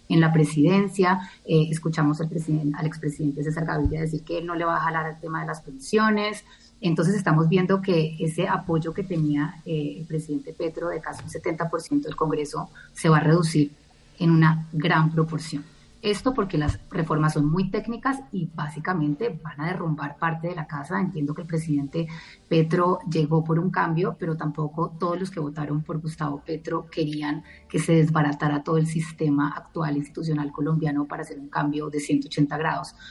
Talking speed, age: 180 wpm, 30-49